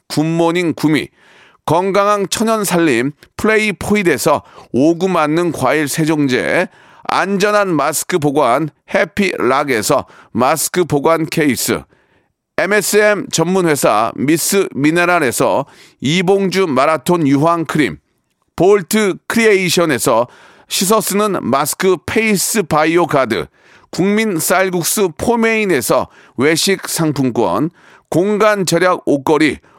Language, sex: Korean, male